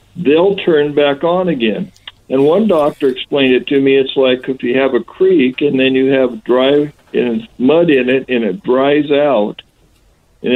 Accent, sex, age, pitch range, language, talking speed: American, male, 60-79, 125-150 Hz, English, 195 wpm